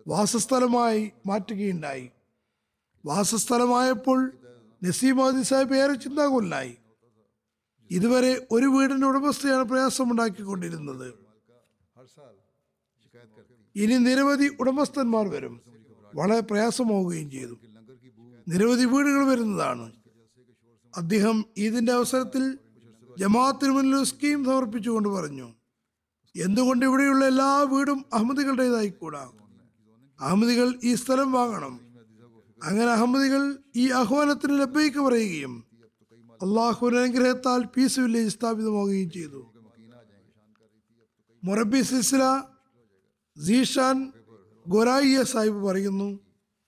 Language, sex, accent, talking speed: Malayalam, male, native, 60 wpm